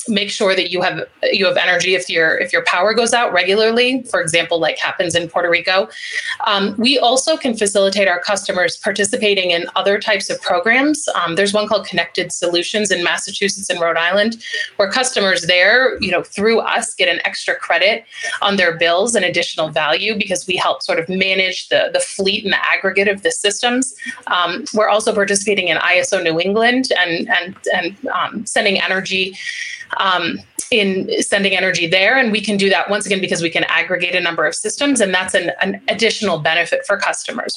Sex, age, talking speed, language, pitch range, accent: female, 30-49, 195 wpm, English, 180-215 Hz, American